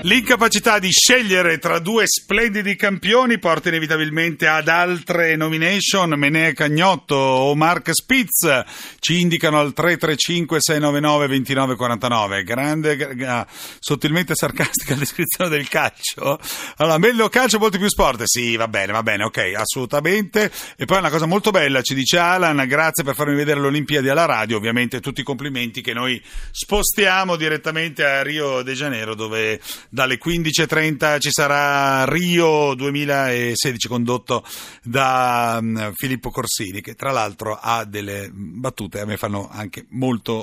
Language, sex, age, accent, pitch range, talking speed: Italian, male, 40-59, native, 125-170 Hz, 140 wpm